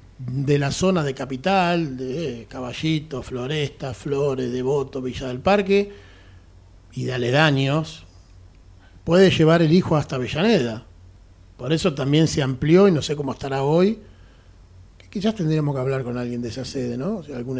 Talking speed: 160 wpm